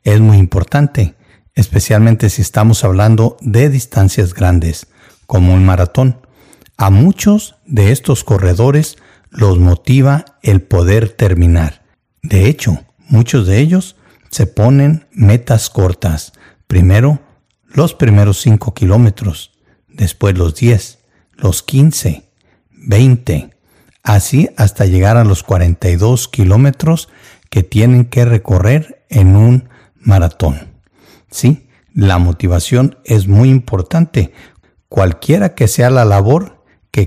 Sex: male